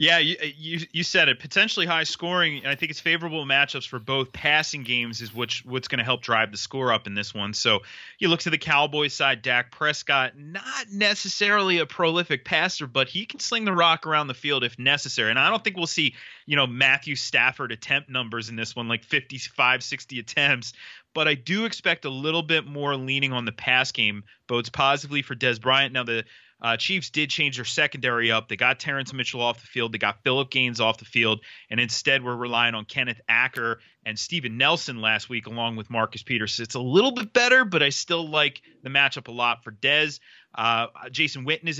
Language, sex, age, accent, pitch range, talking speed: English, male, 30-49, American, 120-160 Hz, 220 wpm